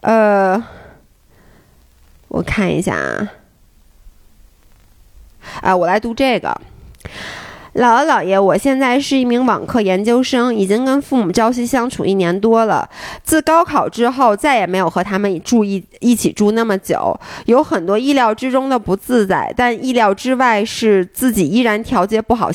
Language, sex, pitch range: Chinese, female, 195-255 Hz